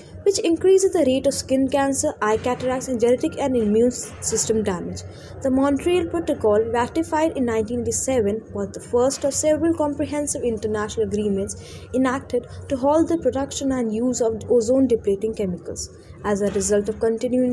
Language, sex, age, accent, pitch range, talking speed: English, female, 20-39, Indian, 215-275 Hz, 155 wpm